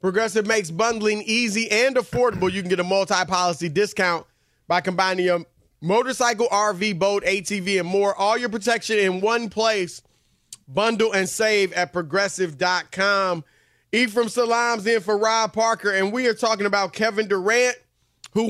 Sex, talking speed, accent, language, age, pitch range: male, 150 wpm, American, English, 30-49, 180-230 Hz